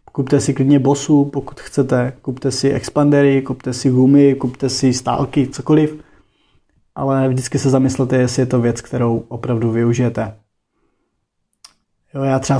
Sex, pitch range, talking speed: male, 125-140 Hz, 145 wpm